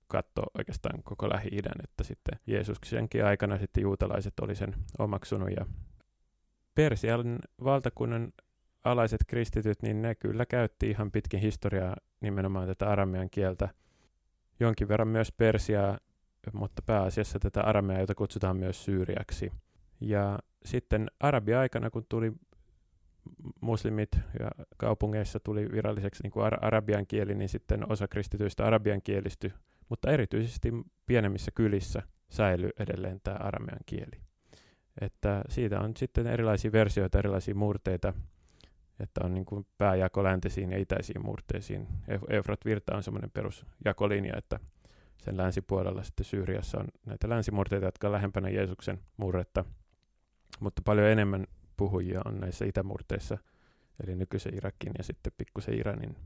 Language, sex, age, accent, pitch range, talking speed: Finnish, male, 30-49, native, 95-110 Hz, 125 wpm